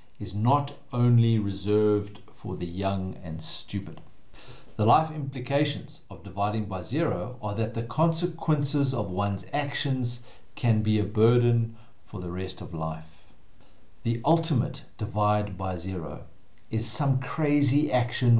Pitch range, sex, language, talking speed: 105-135 Hz, male, English, 135 wpm